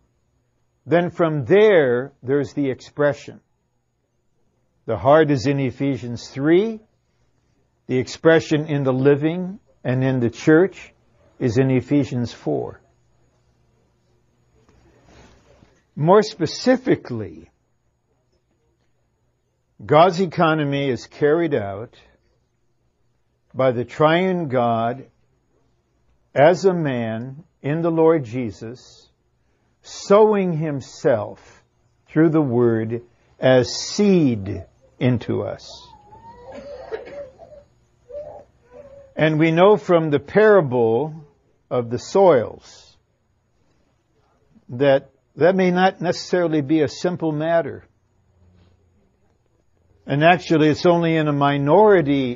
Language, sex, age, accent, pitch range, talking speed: Filipino, male, 60-79, American, 120-165 Hz, 90 wpm